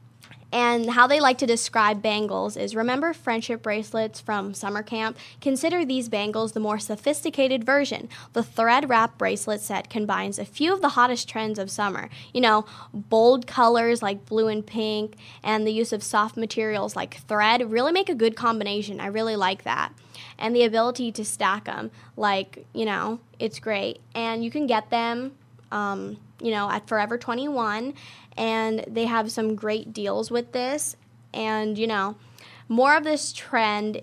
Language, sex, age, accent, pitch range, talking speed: English, female, 10-29, American, 210-240 Hz, 170 wpm